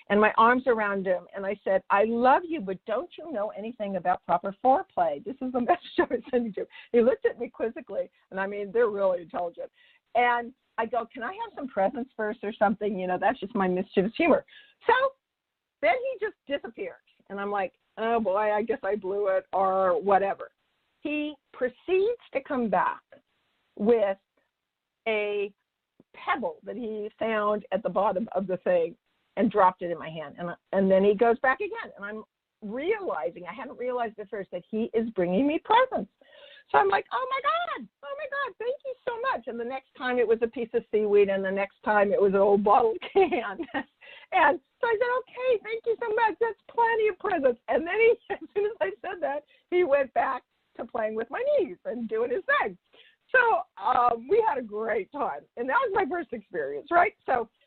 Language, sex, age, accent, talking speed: English, female, 50-69, American, 210 wpm